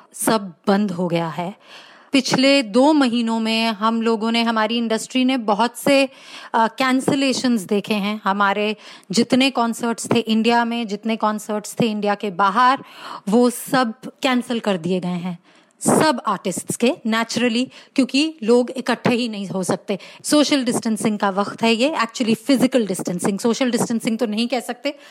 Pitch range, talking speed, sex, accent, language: 215-260 Hz, 155 wpm, female, native, Hindi